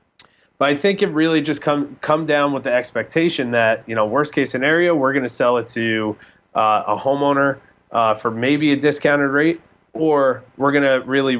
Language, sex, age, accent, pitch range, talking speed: English, male, 30-49, American, 105-135 Hz, 200 wpm